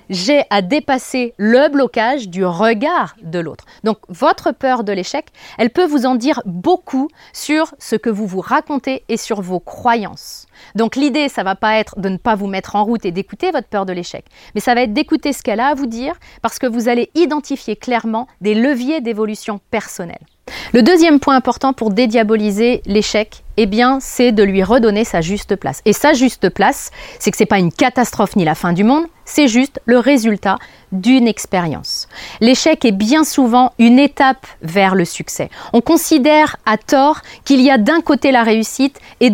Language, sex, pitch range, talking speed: French, female, 215-290 Hz, 200 wpm